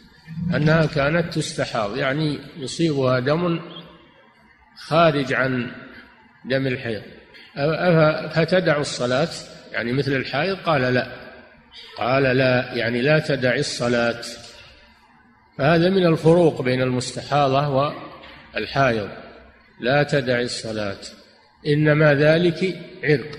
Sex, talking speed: male, 90 wpm